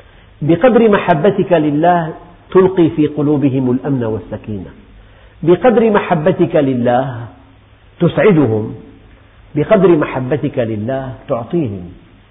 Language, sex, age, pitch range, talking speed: Arabic, male, 50-69, 105-155 Hz, 80 wpm